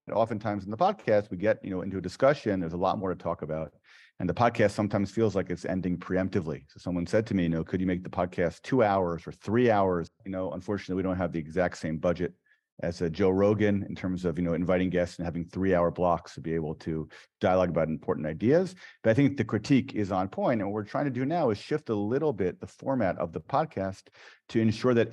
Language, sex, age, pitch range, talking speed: English, male, 40-59, 90-110 Hz, 255 wpm